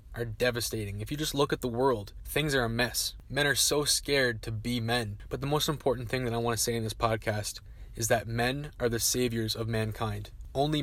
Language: English